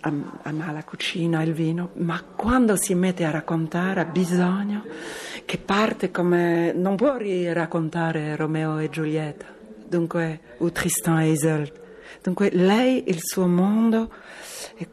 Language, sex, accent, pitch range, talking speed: Italian, female, native, 160-185 Hz, 140 wpm